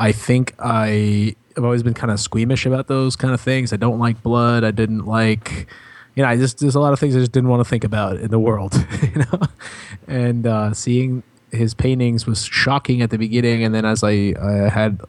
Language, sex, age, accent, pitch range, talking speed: English, male, 20-39, American, 105-120 Hz, 230 wpm